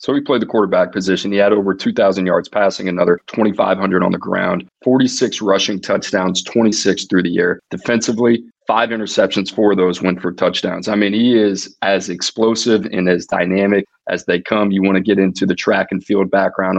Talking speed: 195 wpm